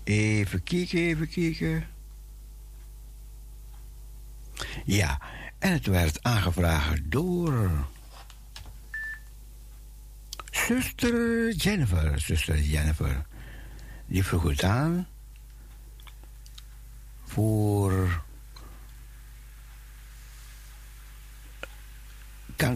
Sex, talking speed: male, 50 wpm